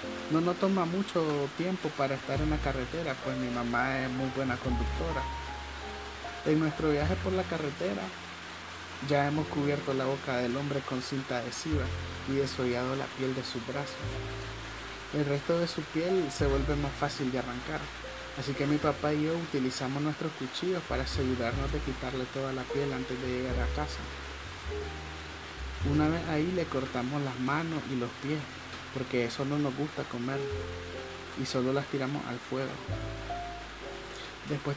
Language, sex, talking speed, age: Spanish, male, 165 wpm, 30-49